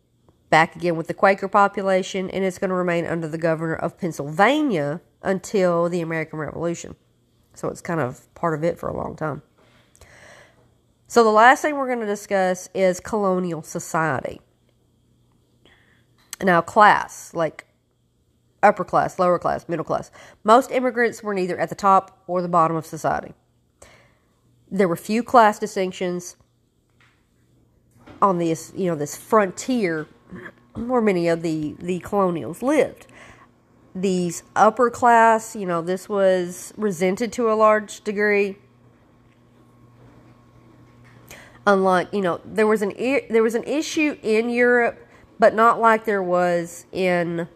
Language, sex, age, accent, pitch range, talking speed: English, female, 40-59, American, 170-215 Hz, 140 wpm